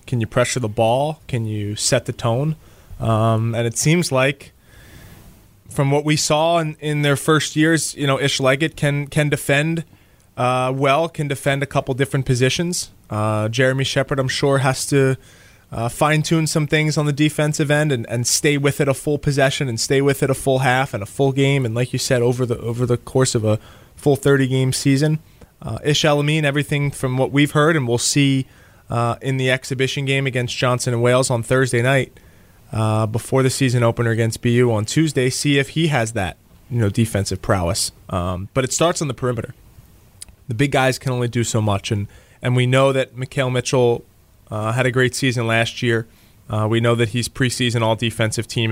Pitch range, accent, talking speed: 110-140 Hz, American, 205 wpm